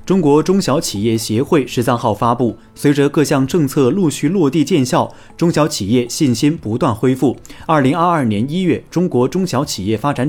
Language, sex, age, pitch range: Chinese, male, 30-49, 115-155 Hz